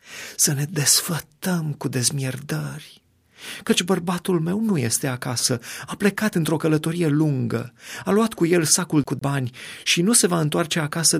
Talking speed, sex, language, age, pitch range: 155 wpm, male, Romanian, 30-49, 115-155 Hz